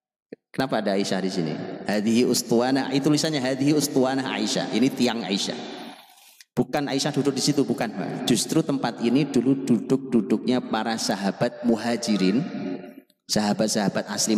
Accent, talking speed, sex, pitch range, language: native, 130 wpm, male, 105-135 Hz, Indonesian